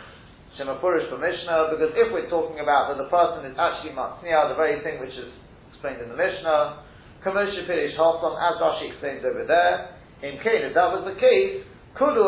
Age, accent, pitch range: 40-59, British, 155-205 Hz